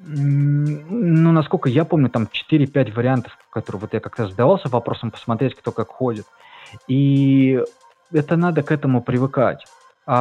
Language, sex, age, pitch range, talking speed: Russian, male, 20-39, 110-140 Hz, 140 wpm